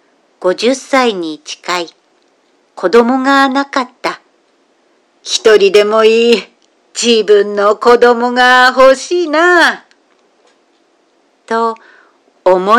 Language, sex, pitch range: Japanese, female, 190-280 Hz